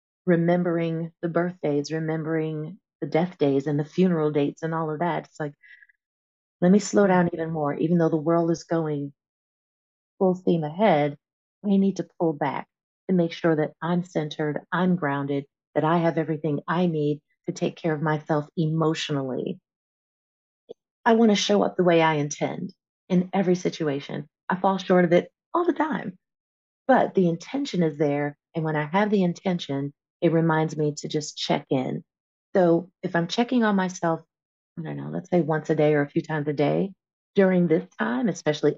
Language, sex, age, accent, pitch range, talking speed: English, female, 30-49, American, 155-185 Hz, 185 wpm